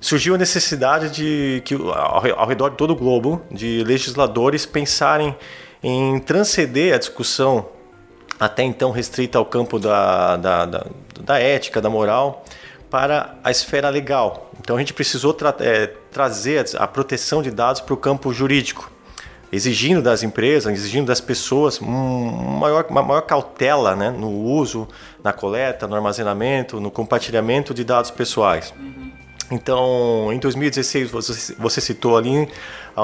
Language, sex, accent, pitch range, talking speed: Portuguese, male, Brazilian, 110-145 Hz, 145 wpm